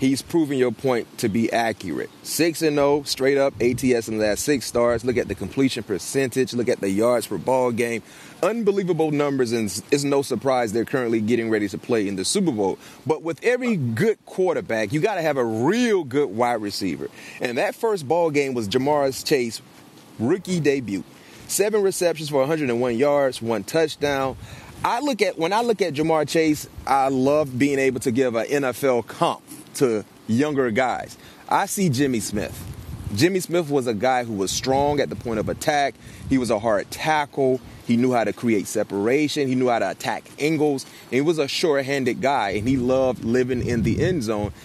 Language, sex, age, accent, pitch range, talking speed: English, male, 30-49, American, 120-155 Hz, 190 wpm